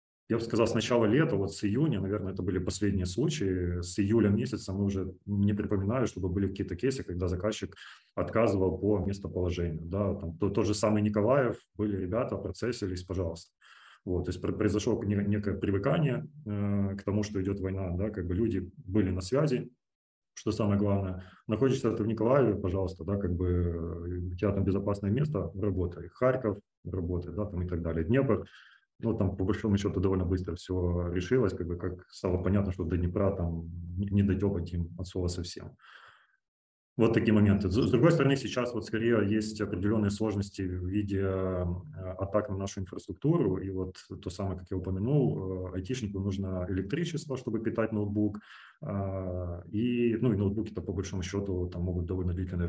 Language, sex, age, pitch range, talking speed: Ukrainian, male, 20-39, 90-105 Hz, 170 wpm